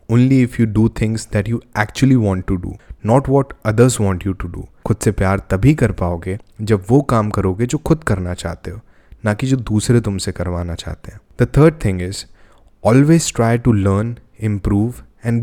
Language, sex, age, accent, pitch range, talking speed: English, male, 20-39, Indian, 95-115 Hz, 115 wpm